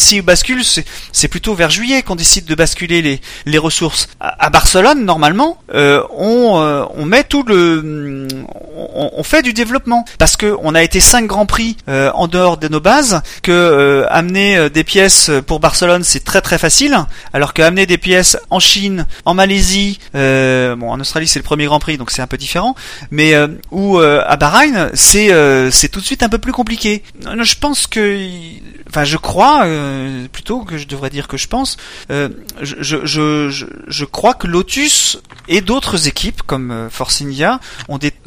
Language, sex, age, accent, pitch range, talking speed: French, male, 30-49, French, 145-200 Hz, 195 wpm